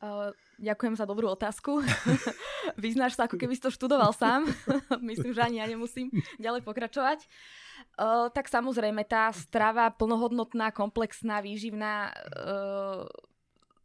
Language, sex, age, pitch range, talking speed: Slovak, female, 20-39, 185-215 Hz, 115 wpm